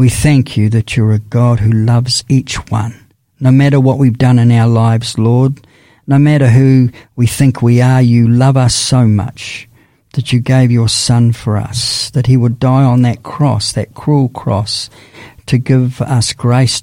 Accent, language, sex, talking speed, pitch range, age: Australian, English, male, 190 wpm, 115-135 Hz, 50-69